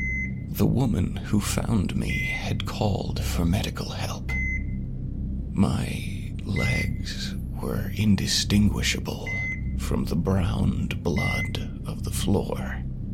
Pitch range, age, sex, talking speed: 65-100 Hz, 40-59, male, 95 wpm